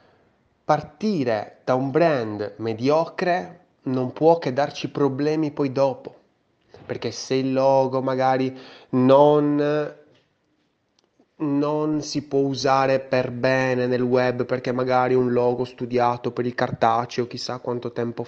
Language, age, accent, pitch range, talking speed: Italian, 20-39, native, 120-150 Hz, 120 wpm